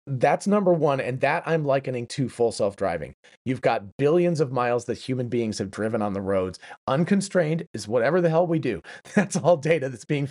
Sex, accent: male, American